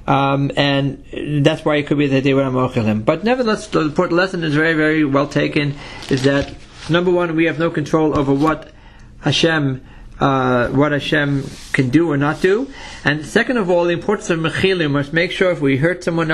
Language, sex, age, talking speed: English, male, 50-69, 200 wpm